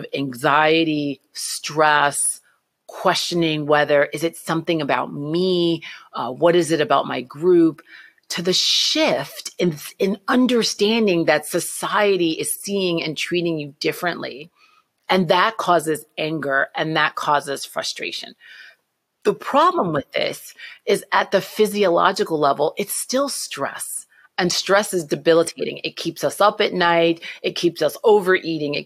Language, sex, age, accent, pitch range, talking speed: English, female, 30-49, American, 150-180 Hz, 135 wpm